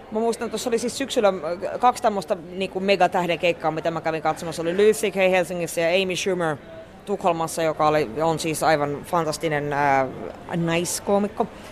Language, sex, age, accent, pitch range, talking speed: Finnish, female, 20-39, native, 165-220 Hz, 150 wpm